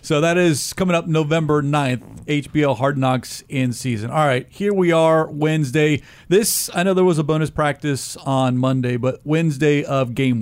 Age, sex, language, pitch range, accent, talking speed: 40-59, male, English, 135-170 Hz, American, 185 wpm